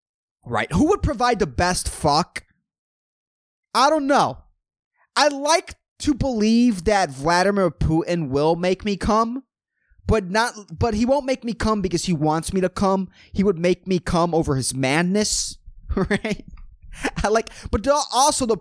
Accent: American